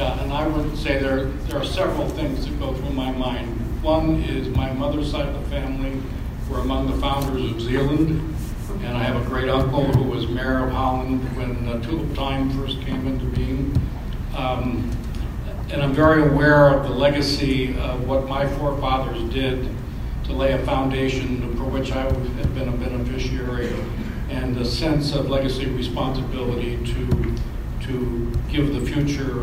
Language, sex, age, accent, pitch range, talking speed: English, male, 60-79, American, 120-140 Hz, 170 wpm